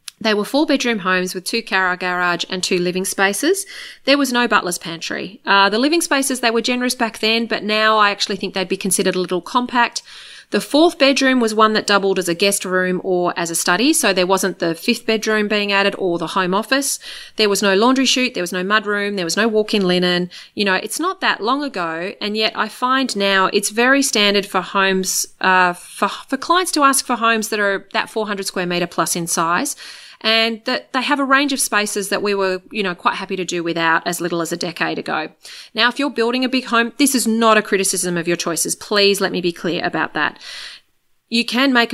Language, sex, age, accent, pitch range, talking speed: English, female, 30-49, Australian, 180-235 Hz, 230 wpm